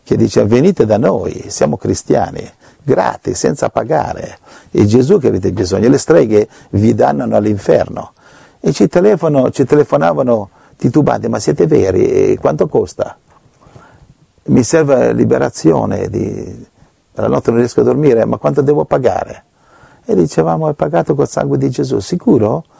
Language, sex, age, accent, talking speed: Italian, male, 50-69, native, 145 wpm